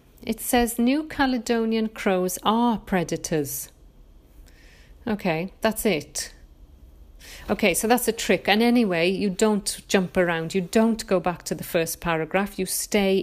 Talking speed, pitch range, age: 140 wpm, 180-230 Hz, 40-59